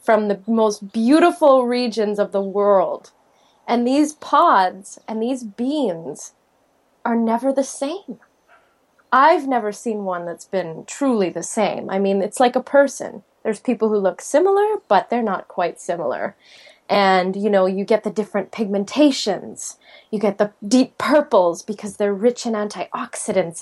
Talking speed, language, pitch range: 155 wpm, English, 190-260 Hz